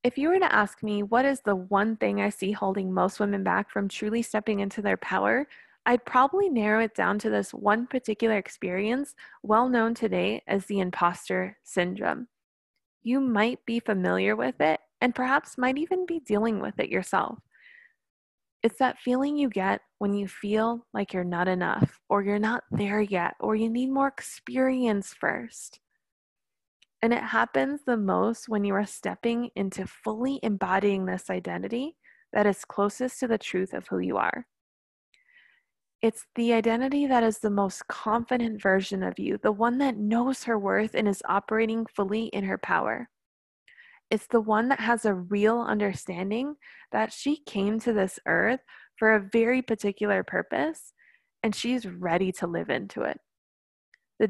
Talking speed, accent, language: 170 wpm, American, English